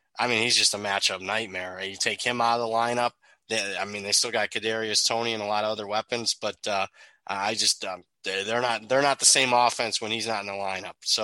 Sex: male